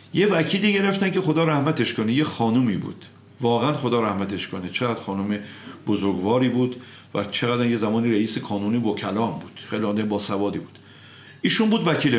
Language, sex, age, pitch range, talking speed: Persian, male, 50-69, 110-145 Hz, 165 wpm